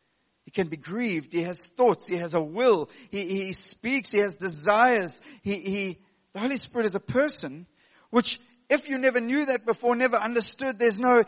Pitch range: 200-250 Hz